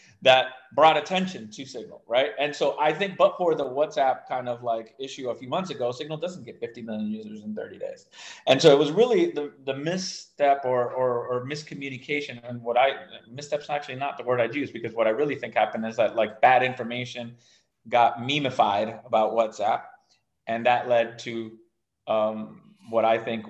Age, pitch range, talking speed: 30-49, 115-145 Hz, 195 wpm